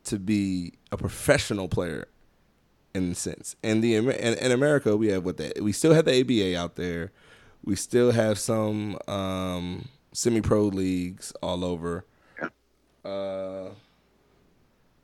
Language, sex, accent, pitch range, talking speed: English, male, American, 90-115 Hz, 135 wpm